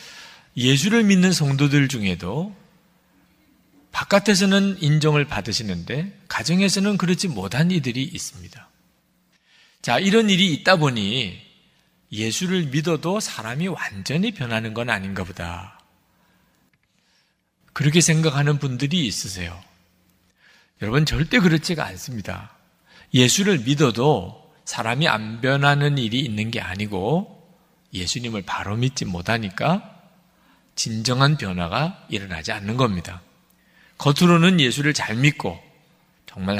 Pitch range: 110-170 Hz